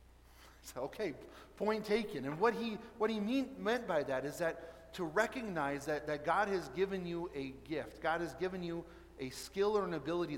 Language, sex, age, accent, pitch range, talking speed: English, male, 30-49, American, 140-180 Hz, 195 wpm